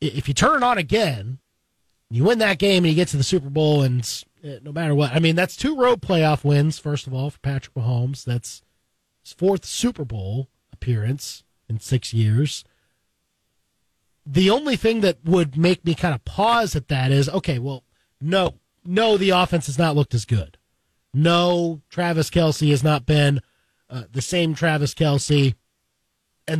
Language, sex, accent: English, male, American